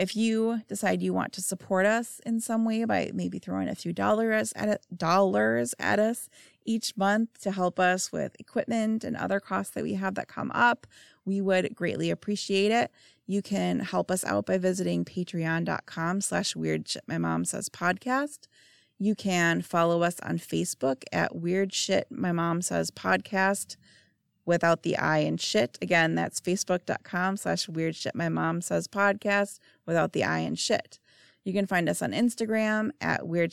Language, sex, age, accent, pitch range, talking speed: English, female, 30-49, American, 135-215 Hz, 175 wpm